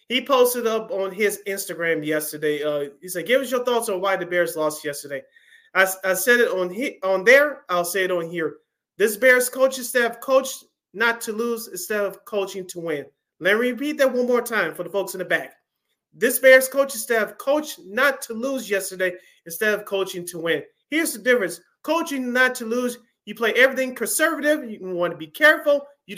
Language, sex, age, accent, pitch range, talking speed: English, male, 30-49, American, 190-265 Hz, 205 wpm